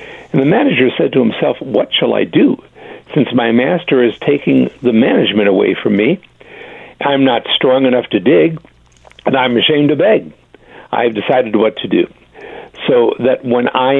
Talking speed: 175 wpm